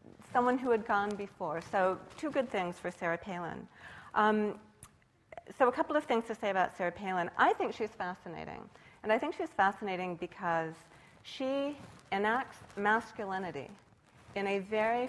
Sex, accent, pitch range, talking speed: female, American, 175-220 Hz, 155 wpm